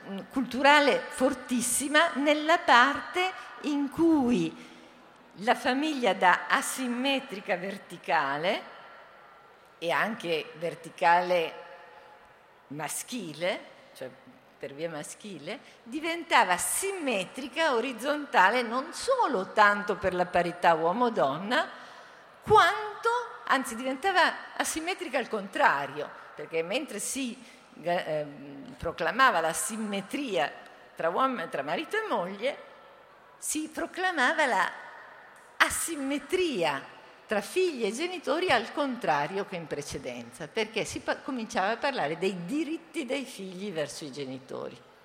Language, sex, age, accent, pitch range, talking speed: Italian, female, 50-69, native, 175-290 Hz, 100 wpm